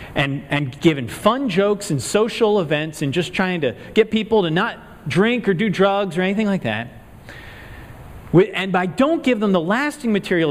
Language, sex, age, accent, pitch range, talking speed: English, male, 40-59, American, 125-200 Hz, 185 wpm